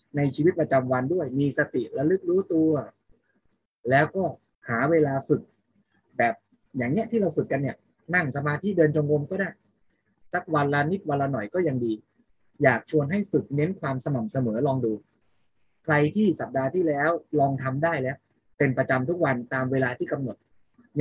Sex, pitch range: male, 130-175 Hz